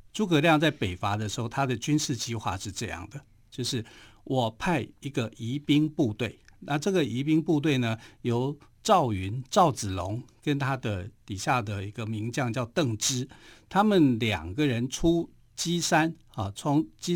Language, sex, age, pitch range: Chinese, male, 50-69, 110-150 Hz